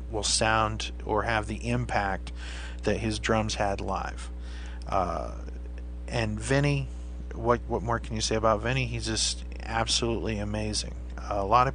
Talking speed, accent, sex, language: 150 wpm, American, male, English